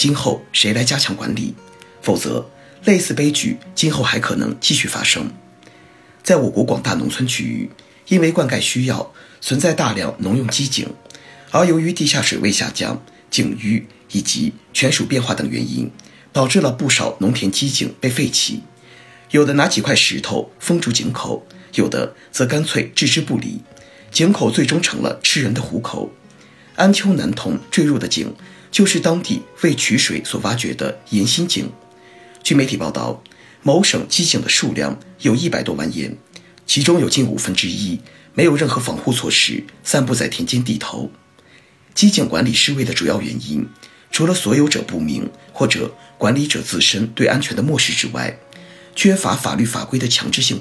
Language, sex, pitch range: Chinese, male, 110-170 Hz